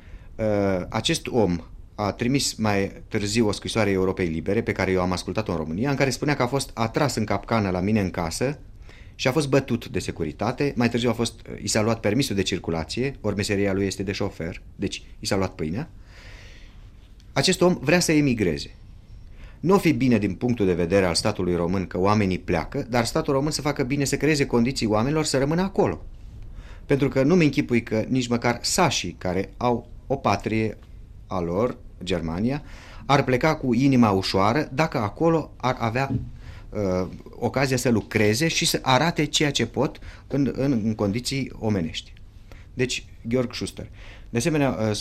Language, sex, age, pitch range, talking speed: Romanian, male, 30-49, 95-130 Hz, 180 wpm